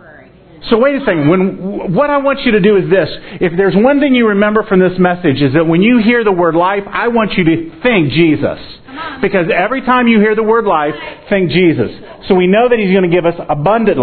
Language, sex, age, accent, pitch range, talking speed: English, male, 40-59, American, 155-205 Hz, 240 wpm